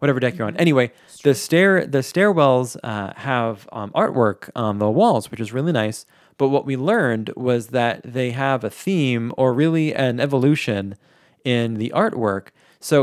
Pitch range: 110-135 Hz